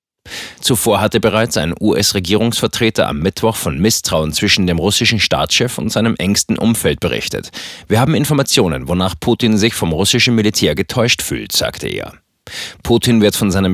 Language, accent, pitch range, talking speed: German, German, 90-115 Hz, 155 wpm